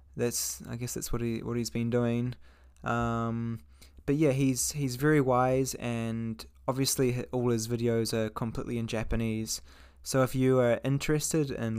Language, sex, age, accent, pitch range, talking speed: English, male, 20-39, Australian, 115-140 Hz, 165 wpm